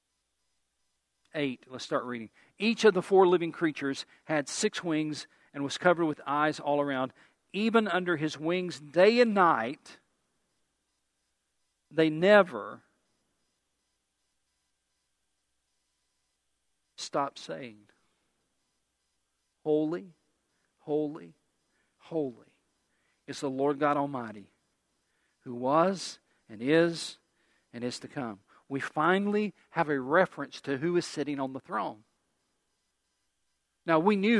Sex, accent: male, American